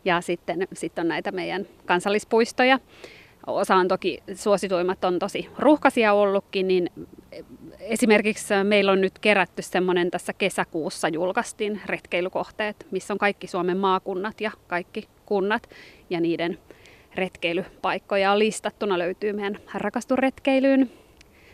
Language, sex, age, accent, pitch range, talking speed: Finnish, female, 30-49, native, 180-215 Hz, 115 wpm